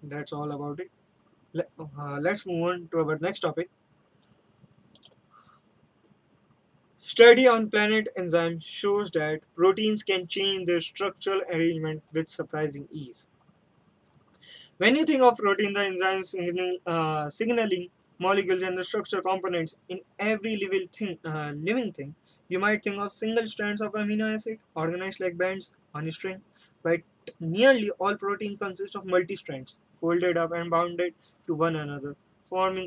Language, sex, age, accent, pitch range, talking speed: English, male, 20-39, Indian, 165-200 Hz, 145 wpm